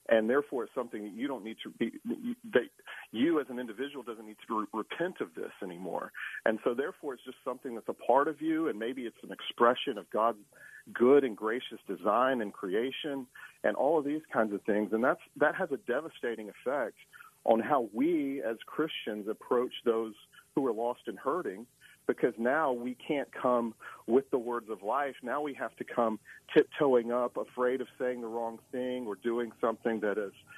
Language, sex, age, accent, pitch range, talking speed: English, male, 40-59, American, 115-145 Hz, 195 wpm